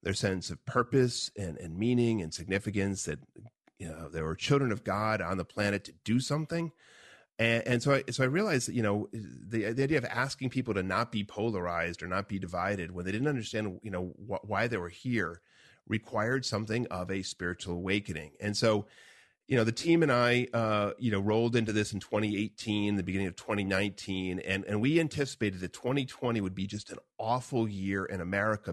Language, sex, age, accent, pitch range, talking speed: English, male, 40-59, American, 95-120 Hz, 205 wpm